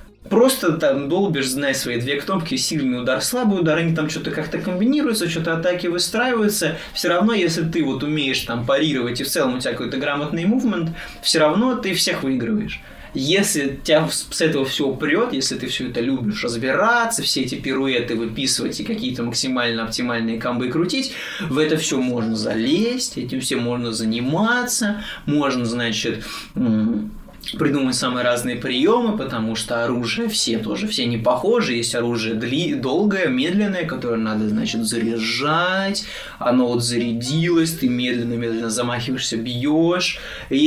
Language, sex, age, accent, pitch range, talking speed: Russian, male, 20-39, native, 120-180 Hz, 150 wpm